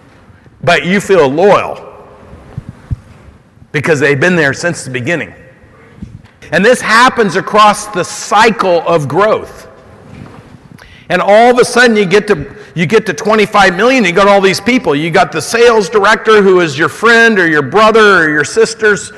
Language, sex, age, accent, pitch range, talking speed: English, male, 50-69, American, 165-220 Hz, 165 wpm